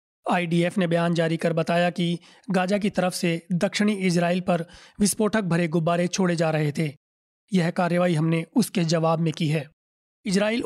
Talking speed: 170 wpm